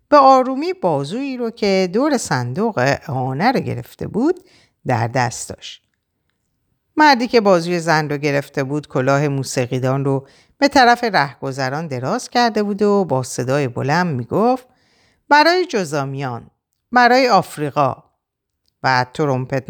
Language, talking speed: Persian, 125 wpm